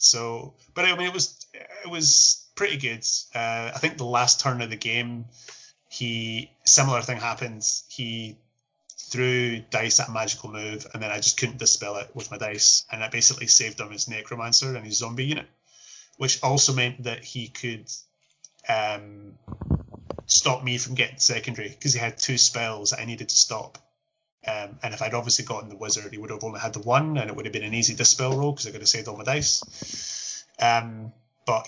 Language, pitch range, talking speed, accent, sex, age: English, 110-135 Hz, 205 wpm, British, male, 20-39